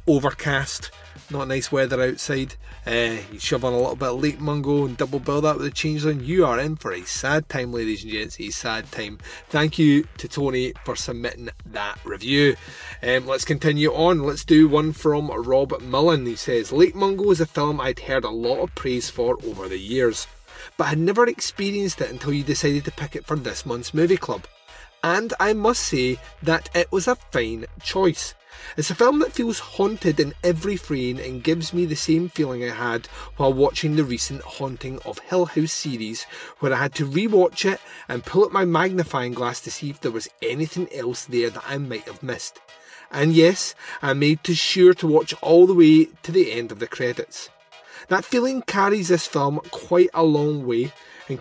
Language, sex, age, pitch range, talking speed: English, male, 30-49, 130-175 Hz, 205 wpm